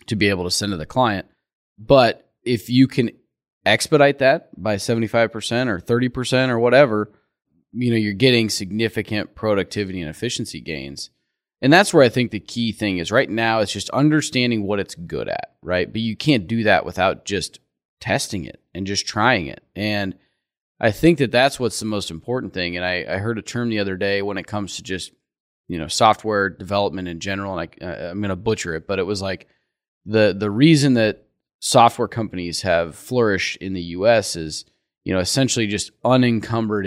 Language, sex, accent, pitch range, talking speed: English, male, American, 95-120 Hz, 195 wpm